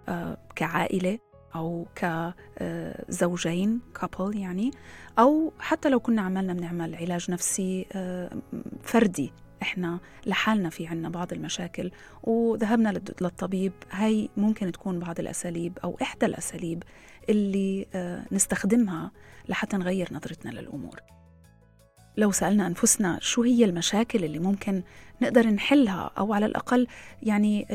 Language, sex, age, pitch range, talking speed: Arabic, female, 30-49, 175-215 Hz, 110 wpm